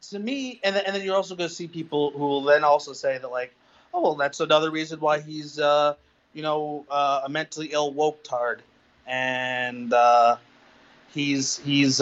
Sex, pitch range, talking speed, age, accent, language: male, 125-155 Hz, 180 wpm, 30-49, American, English